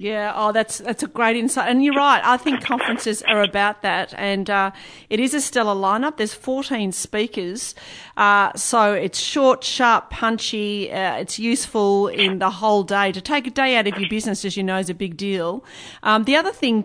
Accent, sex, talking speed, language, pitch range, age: Australian, female, 205 wpm, English, 195-230 Hz, 40-59